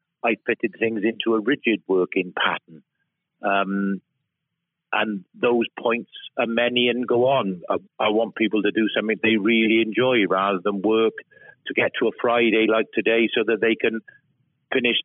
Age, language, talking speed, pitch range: 50-69, English, 170 wpm, 105-120 Hz